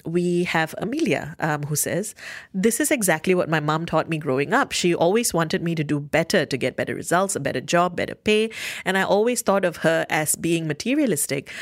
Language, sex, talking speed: English, female, 210 wpm